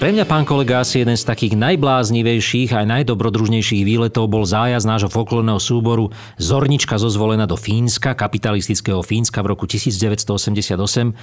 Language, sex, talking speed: Slovak, male, 140 wpm